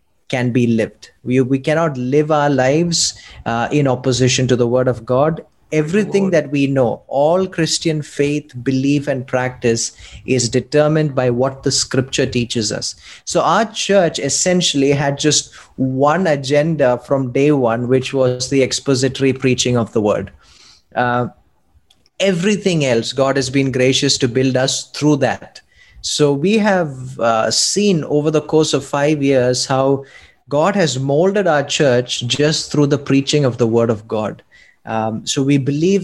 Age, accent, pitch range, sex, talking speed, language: 20-39, Indian, 125-150 Hz, male, 160 wpm, English